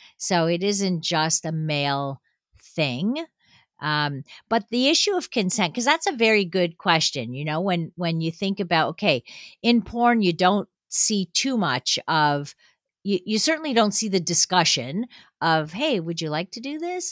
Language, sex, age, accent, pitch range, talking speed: English, female, 50-69, American, 155-220 Hz, 175 wpm